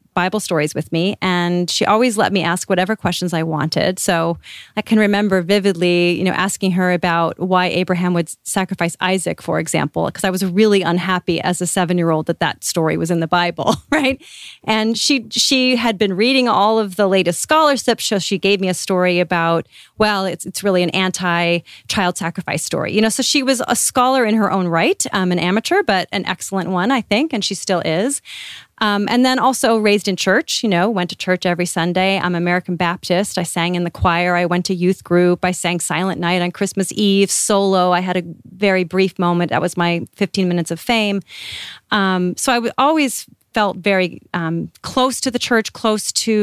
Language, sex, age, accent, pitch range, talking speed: English, female, 30-49, American, 175-205 Hz, 205 wpm